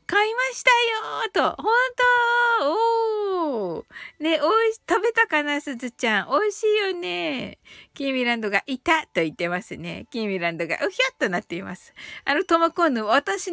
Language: Japanese